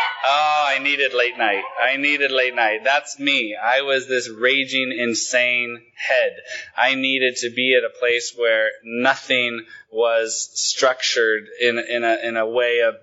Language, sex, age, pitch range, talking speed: English, male, 20-39, 120-175 Hz, 160 wpm